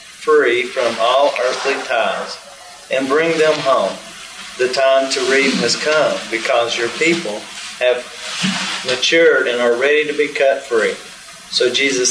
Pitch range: 125-150 Hz